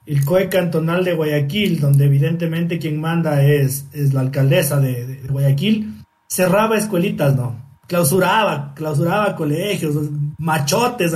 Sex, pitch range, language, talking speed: male, 150-225 Hz, Spanish, 130 wpm